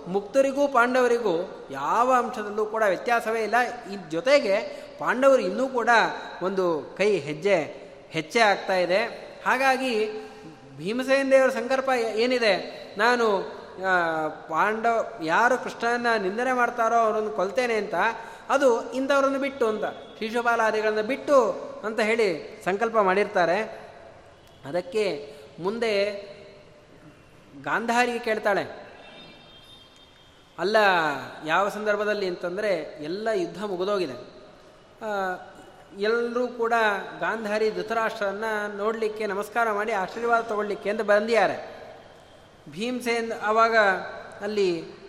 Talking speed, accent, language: 90 wpm, native, Kannada